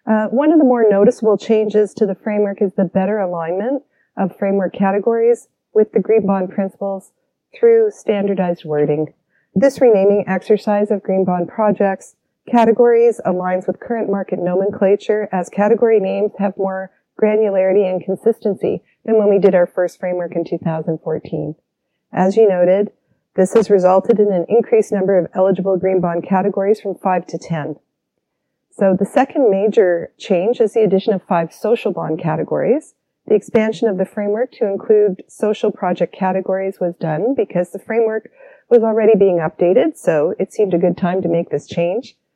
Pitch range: 180-220 Hz